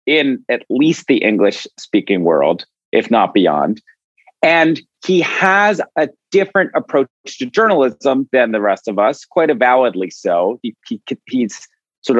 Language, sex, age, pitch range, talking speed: English, male, 40-59, 105-170 Hz, 135 wpm